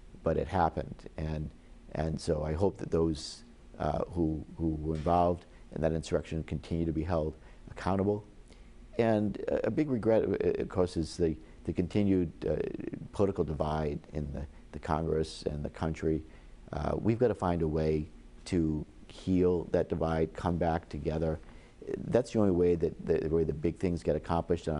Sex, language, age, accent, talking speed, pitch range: male, English, 50-69, American, 170 wpm, 75-85 Hz